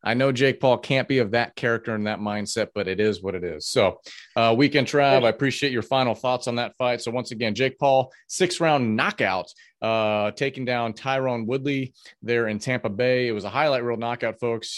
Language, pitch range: English, 105-130 Hz